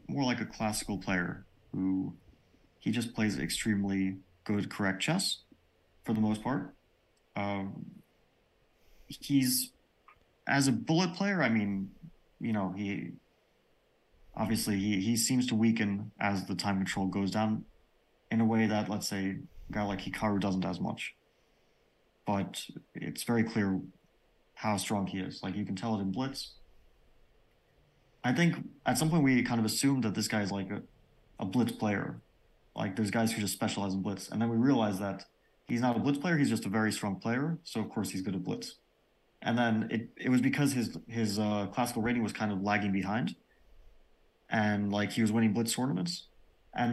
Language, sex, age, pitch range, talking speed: English, male, 30-49, 100-115 Hz, 180 wpm